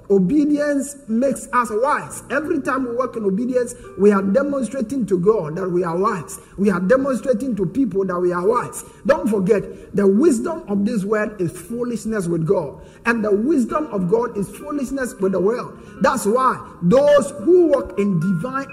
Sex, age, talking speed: male, 50-69, 180 wpm